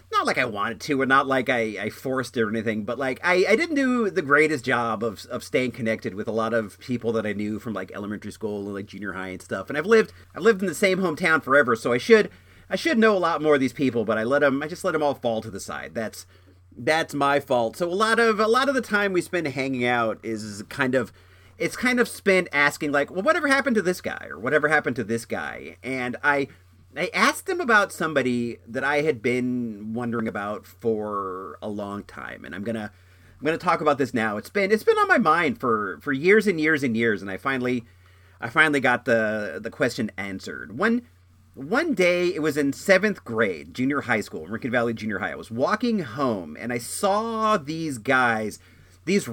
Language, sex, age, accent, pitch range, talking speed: English, male, 40-59, American, 110-175 Hz, 235 wpm